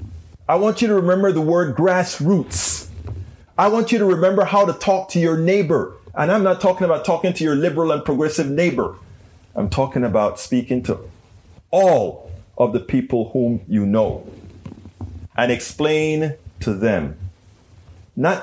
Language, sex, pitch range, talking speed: English, male, 100-150 Hz, 155 wpm